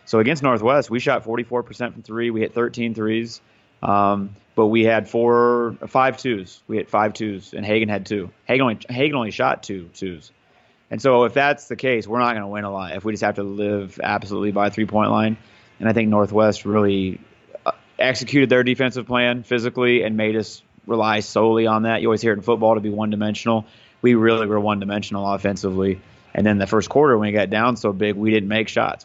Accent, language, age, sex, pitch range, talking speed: American, English, 30-49, male, 100-115 Hz, 215 wpm